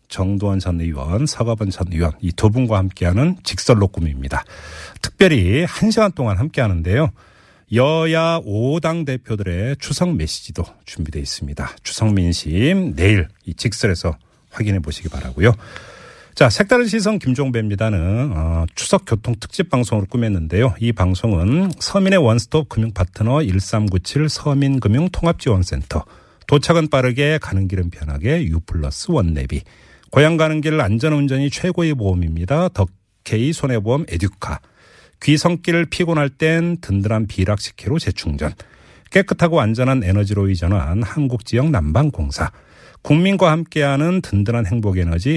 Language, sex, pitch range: Korean, male, 95-150 Hz